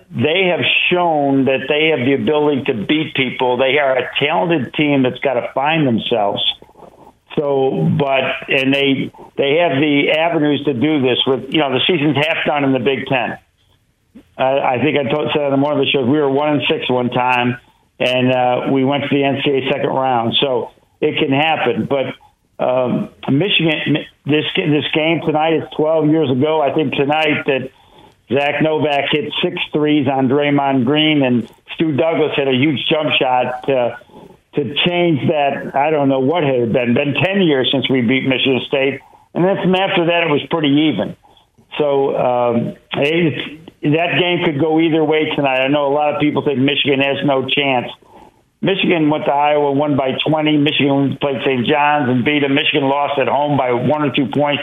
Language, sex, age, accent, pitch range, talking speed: English, male, 60-79, American, 135-155 Hz, 195 wpm